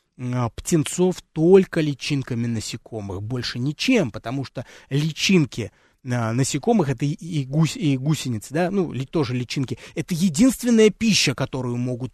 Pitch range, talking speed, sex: 120-175 Hz, 140 wpm, male